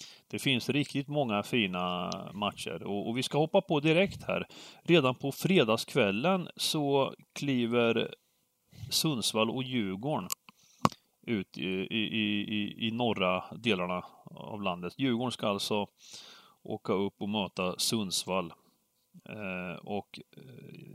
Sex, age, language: male, 30-49, Swedish